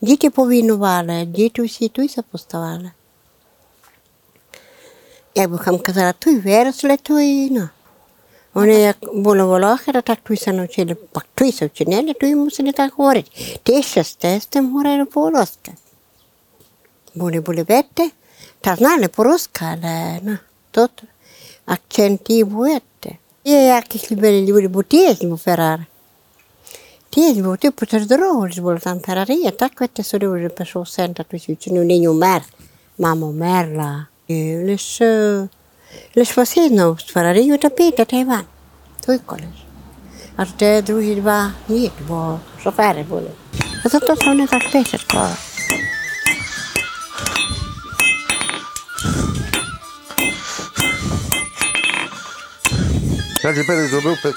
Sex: female